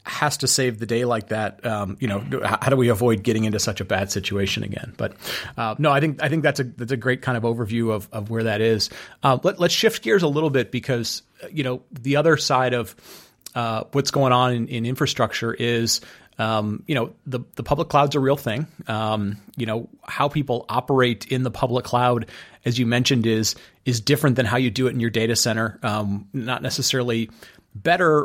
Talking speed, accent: 220 wpm, American